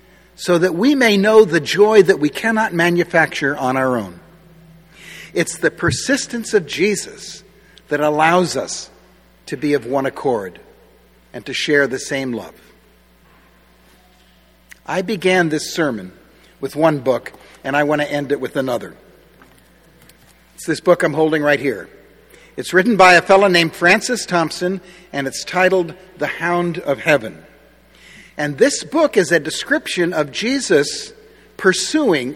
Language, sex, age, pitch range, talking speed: English, male, 60-79, 145-195 Hz, 145 wpm